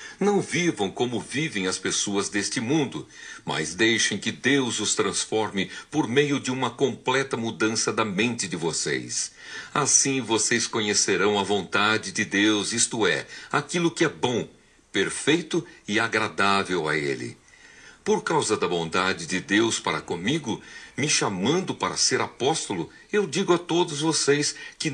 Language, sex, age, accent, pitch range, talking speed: Portuguese, male, 60-79, Brazilian, 115-160 Hz, 145 wpm